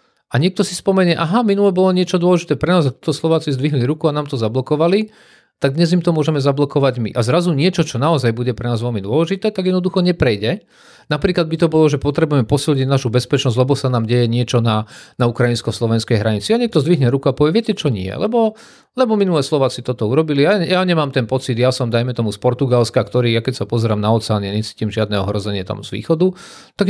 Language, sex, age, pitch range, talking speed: Slovak, male, 40-59, 125-165 Hz, 215 wpm